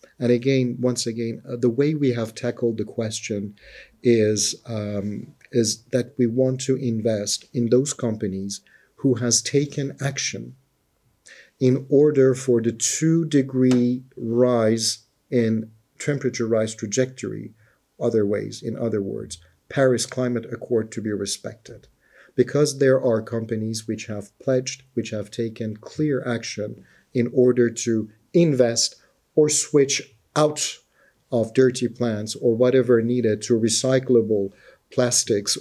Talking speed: 130 wpm